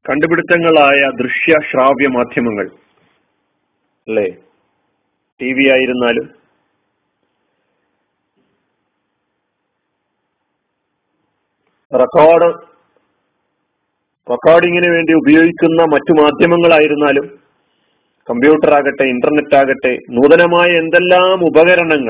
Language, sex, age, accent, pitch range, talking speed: Malayalam, male, 40-59, native, 145-175 Hz, 55 wpm